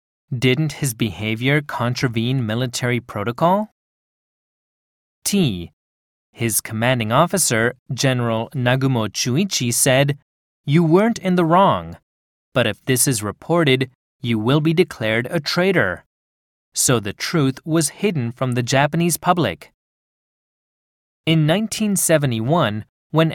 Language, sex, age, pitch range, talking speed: English, male, 30-49, 115-165 Hz, 110 wpm